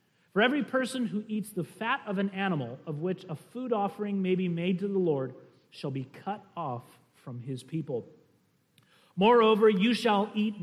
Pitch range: 150-205 Hz